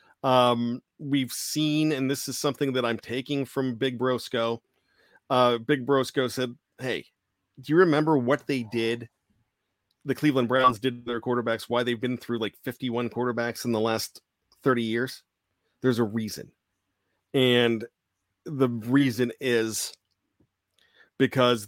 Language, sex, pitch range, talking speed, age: English, male, 115-140 Hz, 140 wpm, 40-59